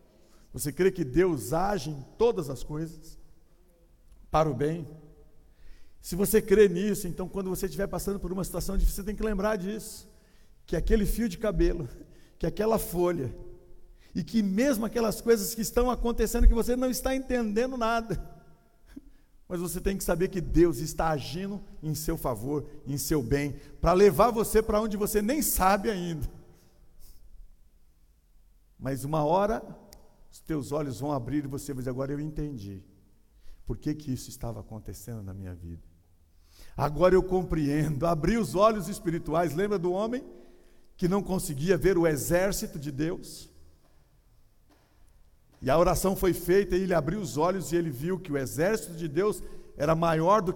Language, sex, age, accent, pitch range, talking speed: Portuguese, male, 50-69, Brazilian, 140-195 Hz, 165 wpm